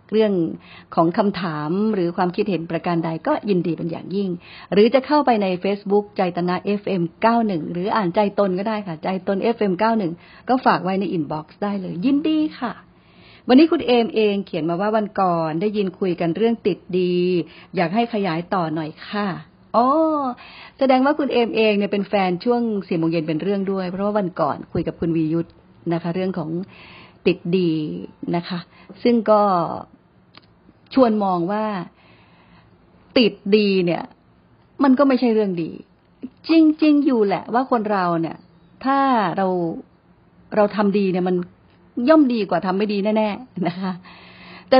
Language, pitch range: Thai, 175-235 Hz